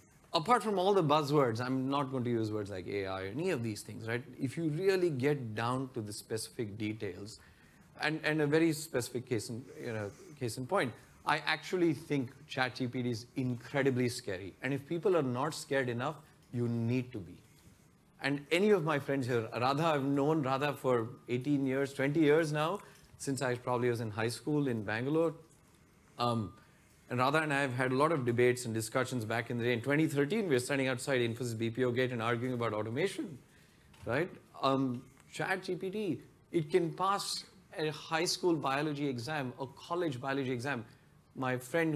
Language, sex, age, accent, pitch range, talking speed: English, male, 30-49, Indian, 120-155 Hz, 180 wpm